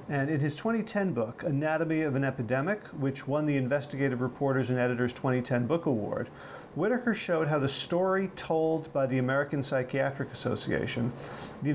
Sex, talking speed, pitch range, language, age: male, 160 wpm, 130-160 Hz, English, 40-59